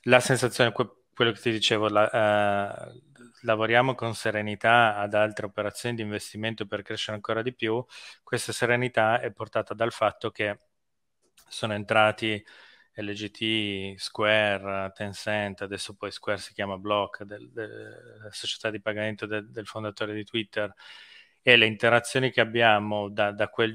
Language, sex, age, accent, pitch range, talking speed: Italian, male, 20-39, native, 105-115 Hz, 135 wpm